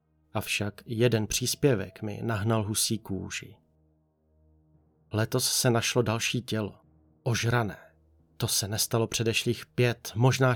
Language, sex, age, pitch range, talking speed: Czech, male, 30-49, 95-125 Hz, 110 wpm